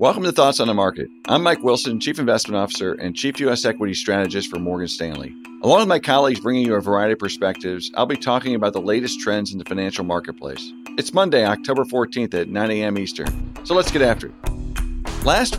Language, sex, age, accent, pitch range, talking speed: English, male, 50-69, American, 100-140 Hz, 210 wpm